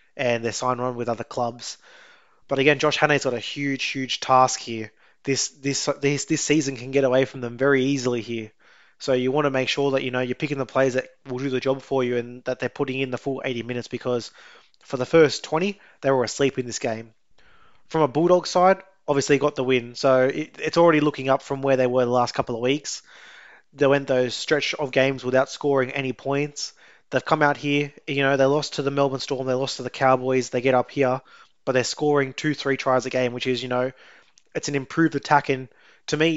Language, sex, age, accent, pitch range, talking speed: English, male, 20-39, Australian, 130-145 Hz, 240 wpm